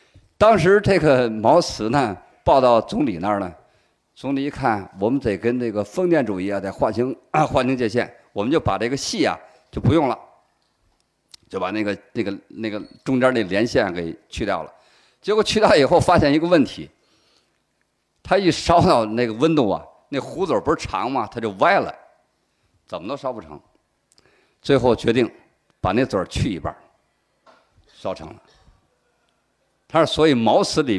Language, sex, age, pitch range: Chinese, male, 50-69, 105-155 Hz